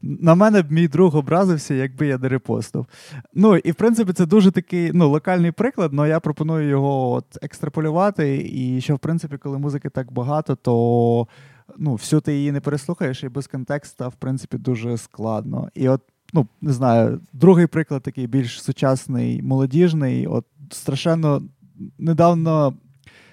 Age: 20-39